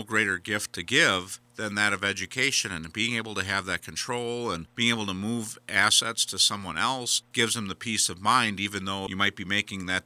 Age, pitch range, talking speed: 50-69, 95-115 Hz, 220 wpm